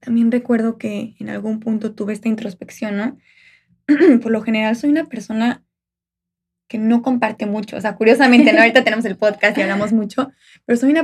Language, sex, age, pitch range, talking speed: Spanish, female, 20-39, 210-255 Hz, 180 wpm